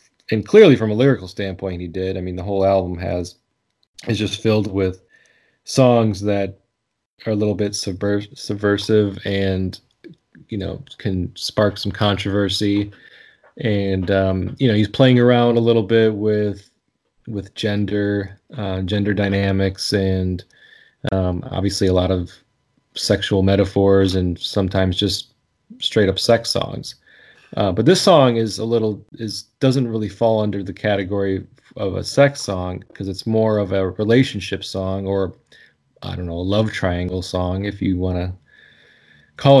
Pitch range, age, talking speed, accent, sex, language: 95-115 Hz, 20-39, 155 wpm, American, male, English